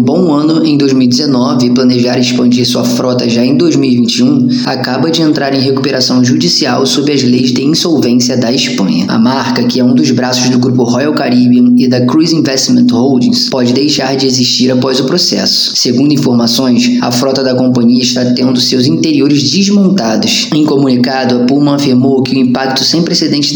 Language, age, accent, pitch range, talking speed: Portuguese, 20-39, Brazilian, 125-145 Hz, 175 wpm